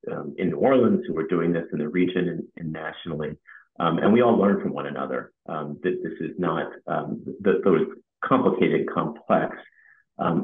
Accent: American